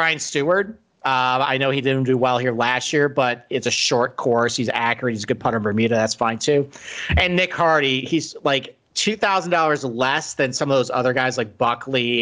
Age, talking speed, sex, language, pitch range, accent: 40-59, 210 wpm, male, English, 120-160 Hz, American